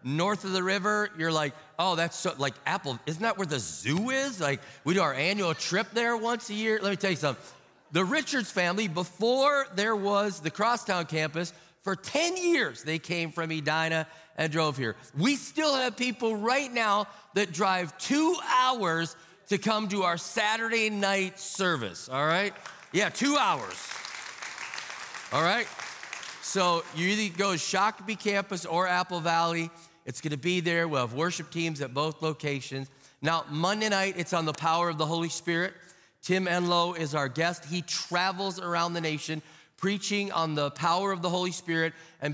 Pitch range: 155-195 Hz